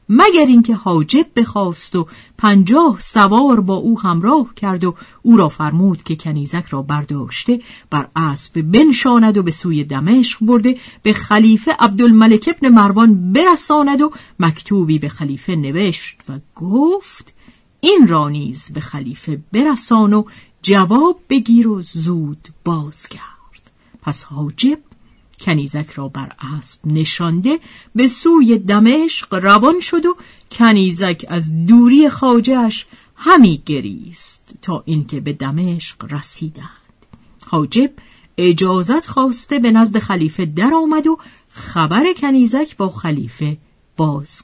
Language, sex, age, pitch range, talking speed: Persian, female, 50-69, 155-250 Hz, 120 wpm